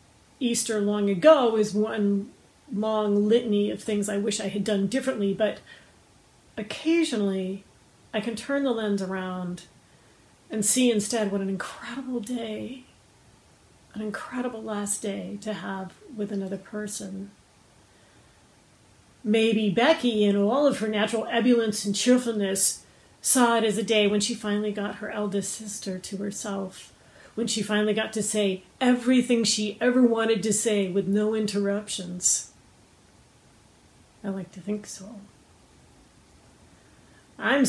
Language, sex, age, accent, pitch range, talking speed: English, female, 40-59, American, 195-225 Hz, 135 wpm